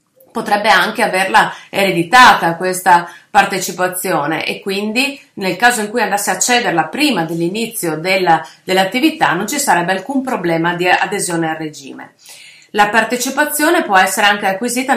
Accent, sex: native, female